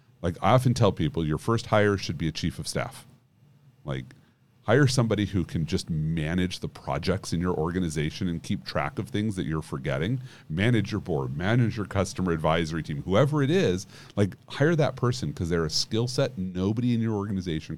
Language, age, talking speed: English, 40-59, 195 wpm